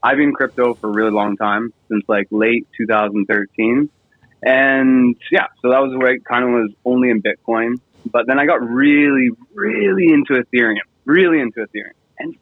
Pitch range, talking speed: 115-155 Hz, 180 wpm